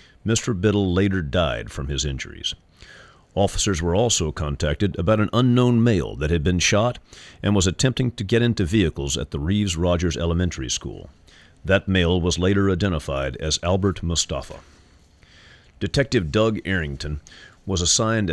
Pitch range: 80-105 Hz